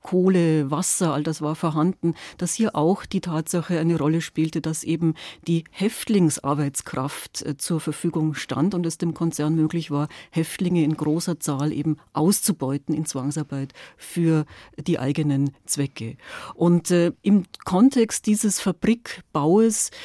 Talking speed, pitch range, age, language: 135 wpm, 155-180 Hz, 40-59, German